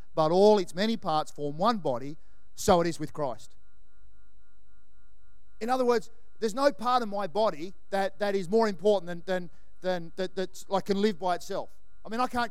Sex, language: male, English